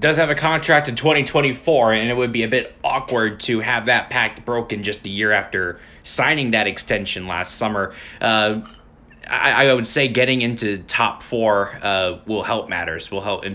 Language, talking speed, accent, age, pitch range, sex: English, 190 wpm, American, 20-39, 95-120 Hz, male